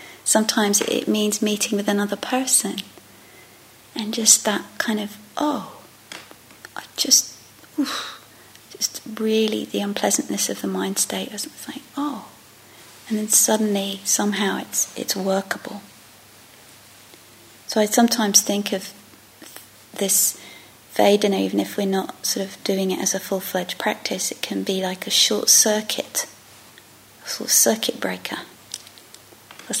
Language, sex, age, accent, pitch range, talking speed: English, female, 30-49, British, 175-215 Hz, 130 wpm